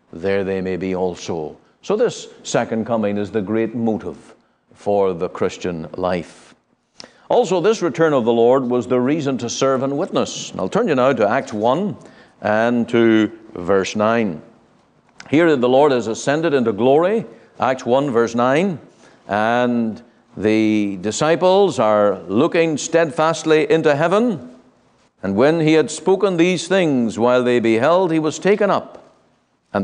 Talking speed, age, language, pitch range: 150 wpm, 60-79, English, 115-185 Hz